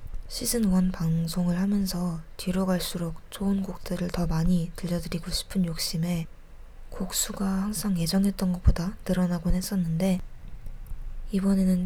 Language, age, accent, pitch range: Korean, 20-39, native, 175-195 Hz